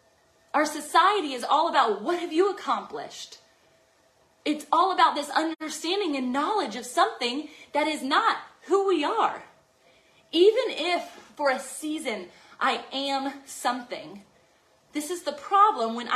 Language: English